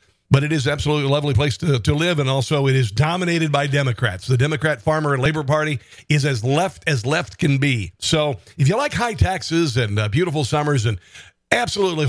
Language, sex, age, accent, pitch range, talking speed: English, male, 50-69, American, 130-155 Hz, 210 wpm